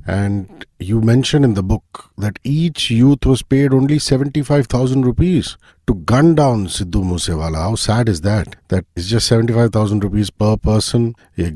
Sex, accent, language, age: male, Indian, English, 50-69